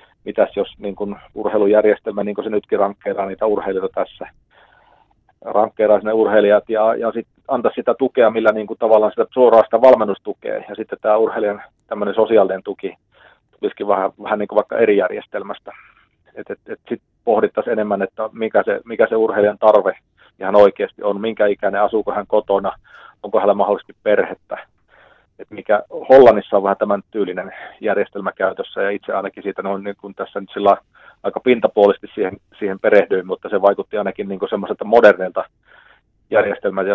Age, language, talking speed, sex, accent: 40-59, Finnish, 160 wpm, male, native